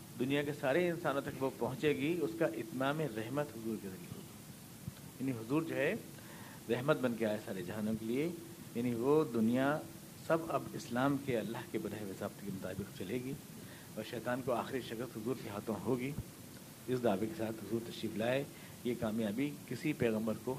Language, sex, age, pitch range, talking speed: Urdu, male, 50-69, 115-150 Hz, 185 wpm